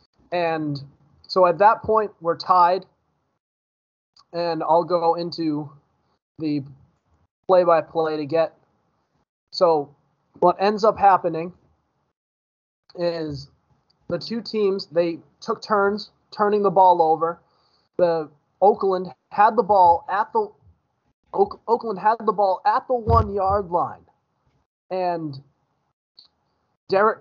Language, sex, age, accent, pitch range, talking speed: English, male, 30-49, American, 155-200 Hz, 115 wpm